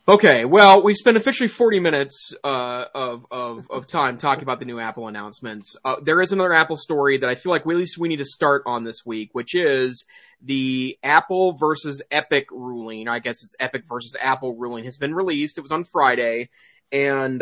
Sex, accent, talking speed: male, American, 205 wpm